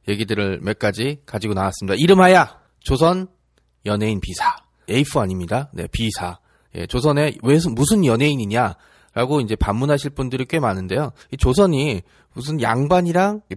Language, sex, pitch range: Korean, male, 110-165 Hz